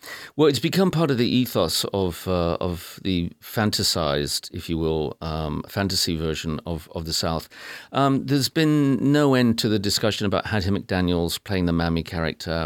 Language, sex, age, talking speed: English, male, 40-59, 175 wpm